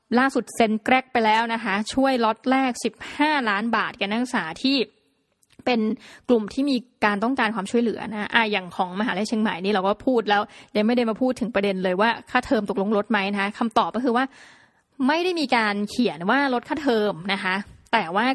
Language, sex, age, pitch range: Thai, female, 20-39, 200-245 Hz